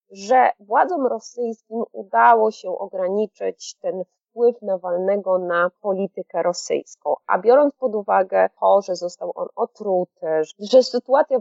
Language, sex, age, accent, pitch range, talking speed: Polish, female, 30-49, native, 180-255 Hz, 125 wpm